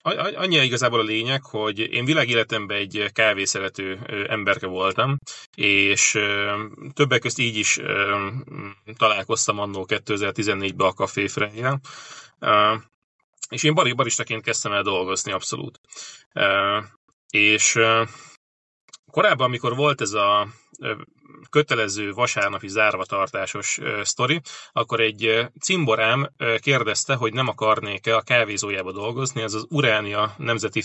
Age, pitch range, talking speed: 30-49, 105-135 Hz, 105 wpm